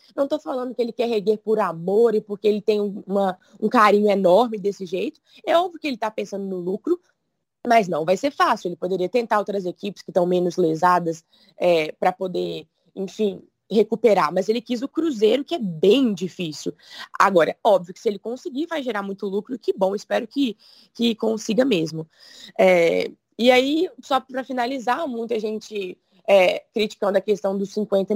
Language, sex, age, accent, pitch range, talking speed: Portuguese, female, 20-39, Brazilian, 195-260 Hz, 175 wpm